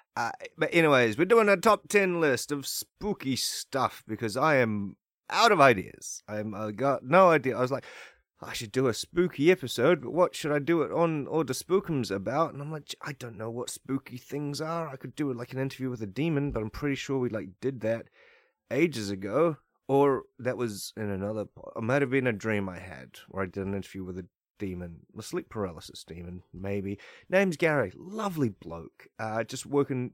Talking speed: 215 wpm